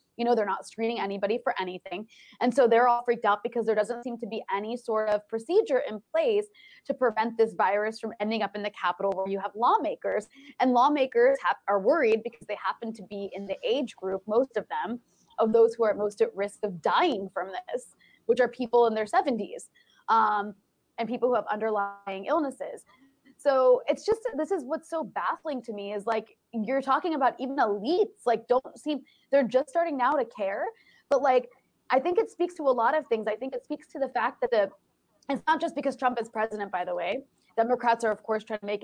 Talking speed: 220 wpm